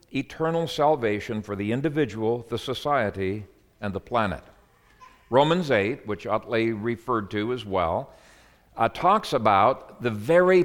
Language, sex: English, male